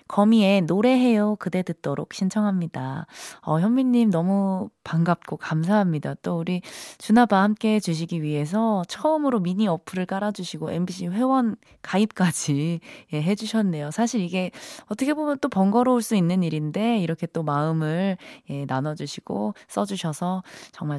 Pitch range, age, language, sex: 160-225 Hz, 20-39, Korean, female